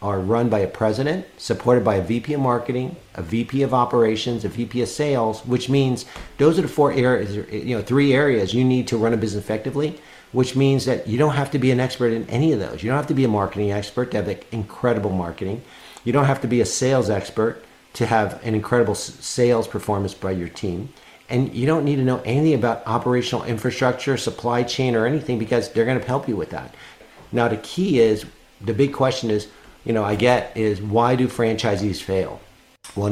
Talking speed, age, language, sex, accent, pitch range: 215 wpm, 50-69, English, male, American, 105-130 Hz